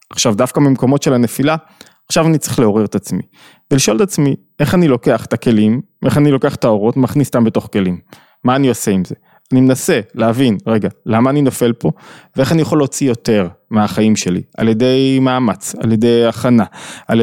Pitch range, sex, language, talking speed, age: 120-150 Hz, male, Hebrew, 190 wpm, 20-39